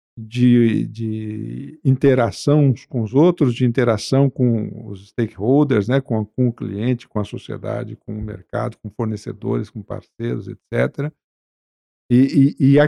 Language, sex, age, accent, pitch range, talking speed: Portuguese, male, 50-69, Brazilian, 115-145 Hz, 140 wpm